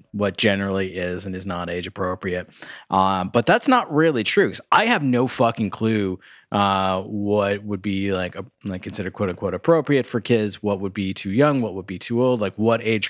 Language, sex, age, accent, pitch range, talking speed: English, male, 20-39, American, 95-115 Hz, 210 wpm